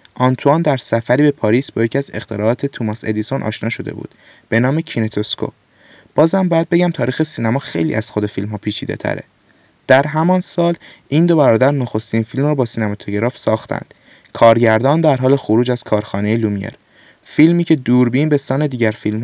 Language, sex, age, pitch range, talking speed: Persian, male, 20-39, 110-145 Hz, 165 wpm